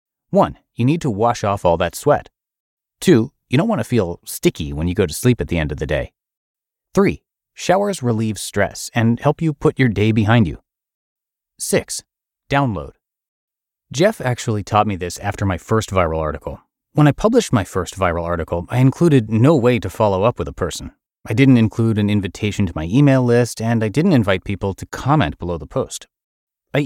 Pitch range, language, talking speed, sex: 90-125 Hz, English, 195 wpm, male